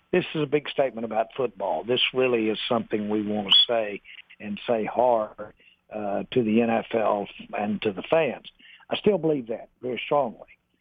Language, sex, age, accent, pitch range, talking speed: English, male, 60-79, American, 110-125 Hz, 180 wpm